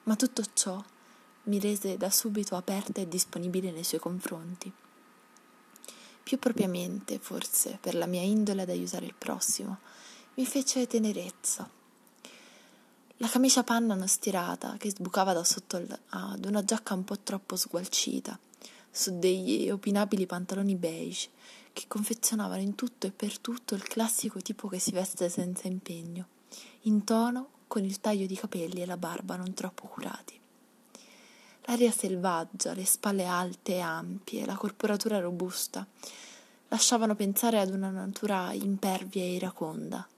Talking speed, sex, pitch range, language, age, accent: 140 wpm, female, 185-230 Hz, Italian, 20-39, native